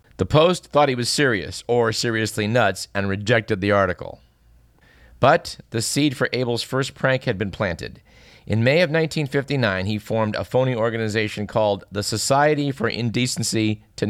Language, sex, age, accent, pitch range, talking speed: English, male, 50-69, American, 105-135 Hz, 160 wpm